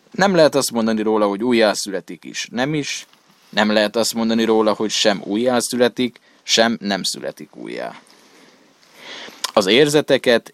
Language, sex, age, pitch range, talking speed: Hungarian, male, 20-39, 100-120 Hz, 135 wpm